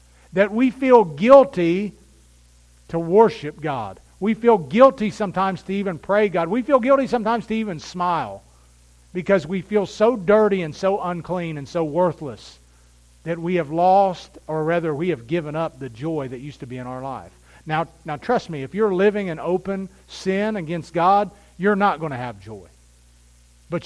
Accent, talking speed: American, 180 wpm